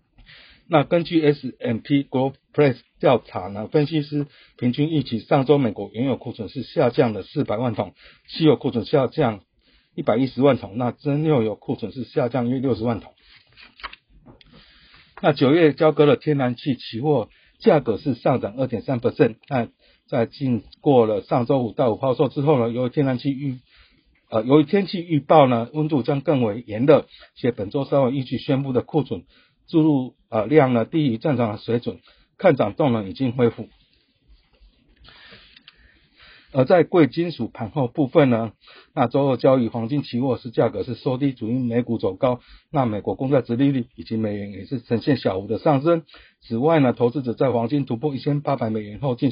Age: 50-69